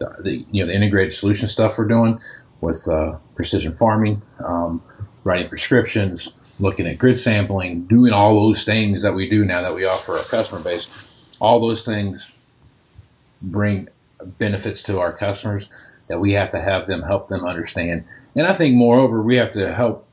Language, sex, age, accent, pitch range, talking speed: English, male, 40-59, American, 95-110 Hz, 175 wpm